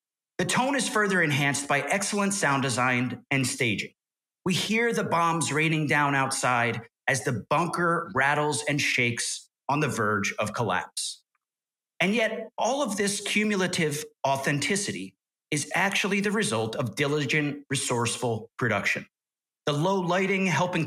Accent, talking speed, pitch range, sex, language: American, 140 wpm, 135-175 Hz, male, English